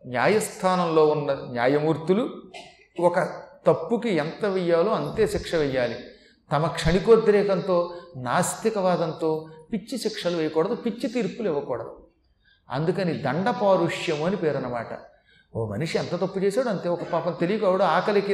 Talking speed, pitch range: 110 wpm, 170-225 Hz